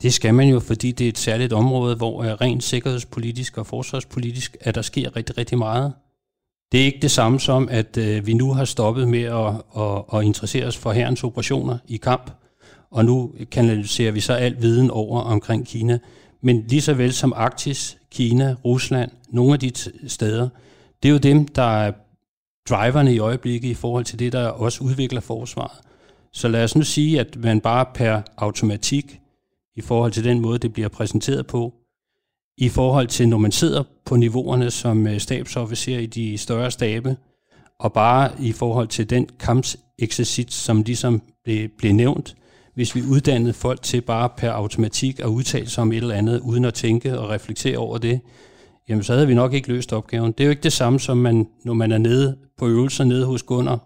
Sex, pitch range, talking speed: male, 115-130 Hz, 195 wpm